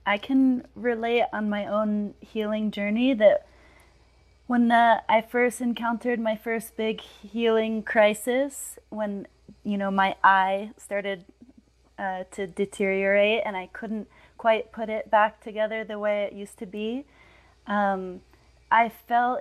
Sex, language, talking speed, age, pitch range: female, English, 140 wpm, 30-49, 195-220 Hz